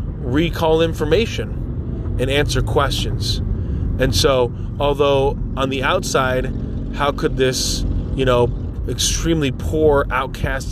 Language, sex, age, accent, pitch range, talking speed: English, male, 20-39, American, 105-135 Hz, 105 wpm